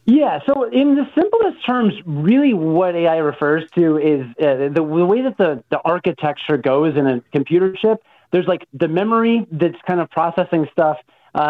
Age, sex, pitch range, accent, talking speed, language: 30-49, male, 150-185 Hz, American, 185 wpm, English